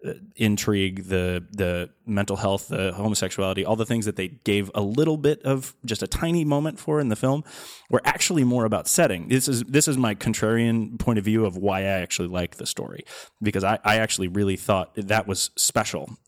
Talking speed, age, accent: 205 wpm, 30-49, American